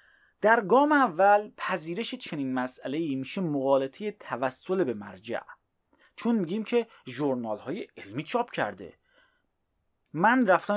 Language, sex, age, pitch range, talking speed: Persian, male, 30-49, 130-200 Hz, 115 wpm